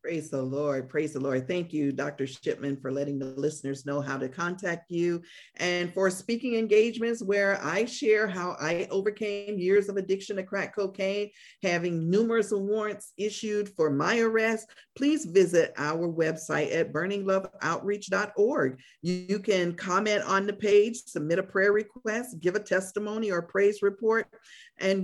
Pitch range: 170-225 Hz